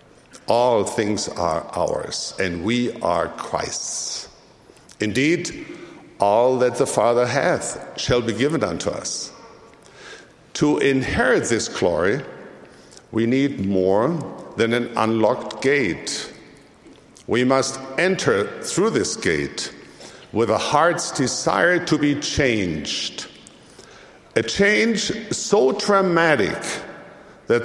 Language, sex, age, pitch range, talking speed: English, male, 60-79, 120-180 Hz, 105 wpm